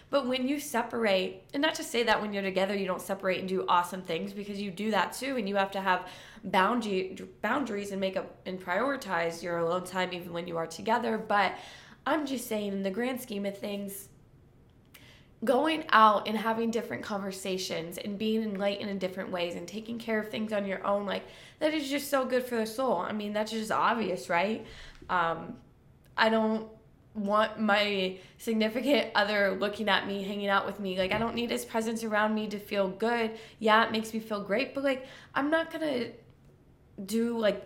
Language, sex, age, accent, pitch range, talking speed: English, female, 20-39, American, 195-235 Hz, 200 wpm